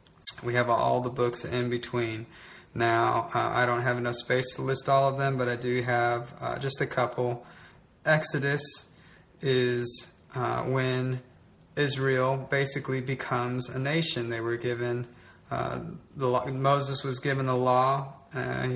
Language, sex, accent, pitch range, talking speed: English, male, American, 125-140 Hz, 155 wpm